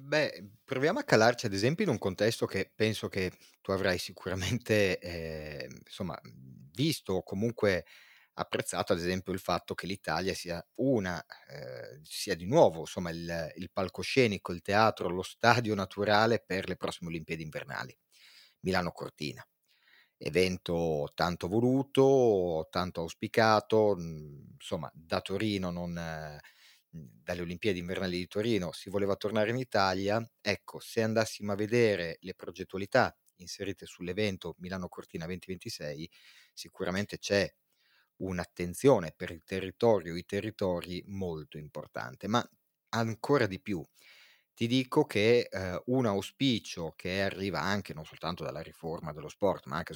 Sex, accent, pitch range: male, native, 85-110 Hz